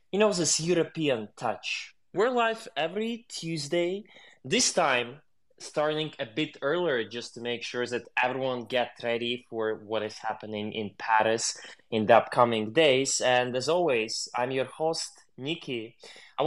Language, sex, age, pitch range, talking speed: English, male, 20-39, 120-165 Hz, 150 wpm